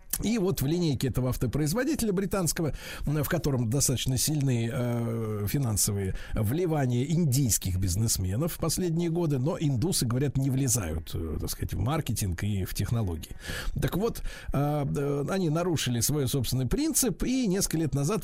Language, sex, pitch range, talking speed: Russian, male, 120-170 Hz, 135 wpm